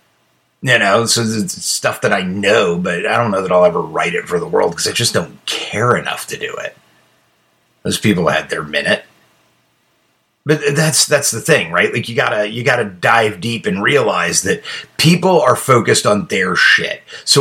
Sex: male